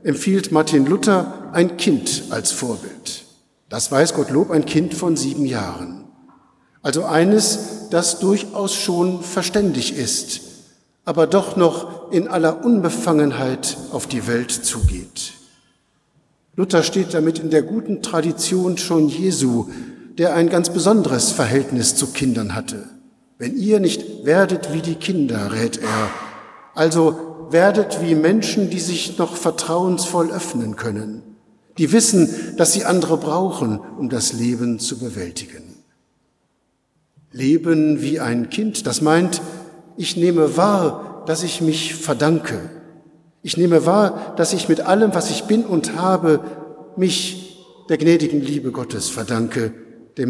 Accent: German